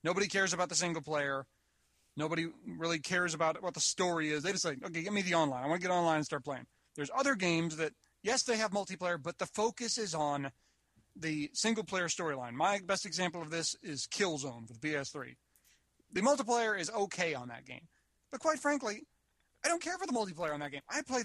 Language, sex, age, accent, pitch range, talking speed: English, male, 30-49, American, 145-215 Hz, 220 wpm